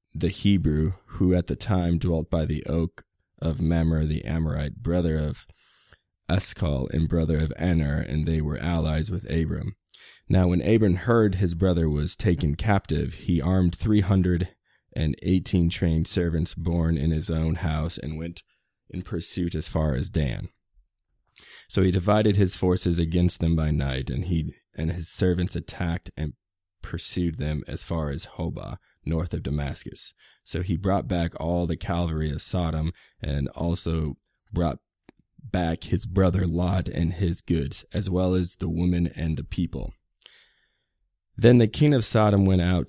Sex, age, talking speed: male, 20-39, 160 wpm